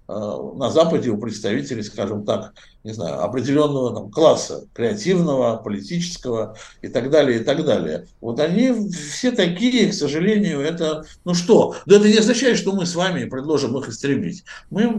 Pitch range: 130-185 Hz